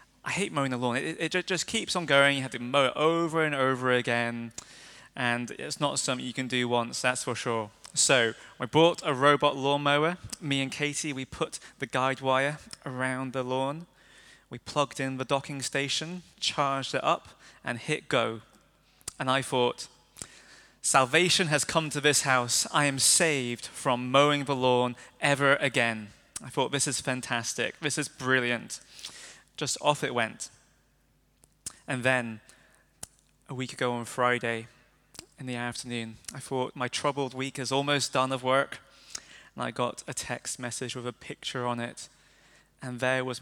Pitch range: 125-145 Hz